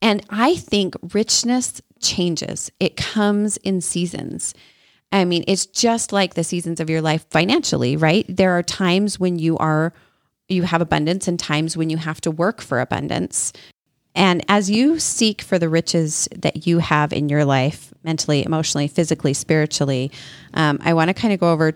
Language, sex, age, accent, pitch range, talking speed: English, female, 30-49, American, 155-195 Hz, 175 wpm